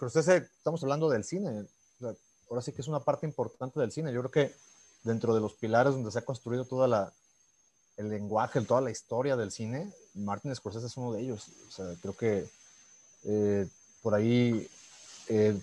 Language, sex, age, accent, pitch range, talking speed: Spanish, male, 30-49, Mexican, 110-135 Hz, 175 wpm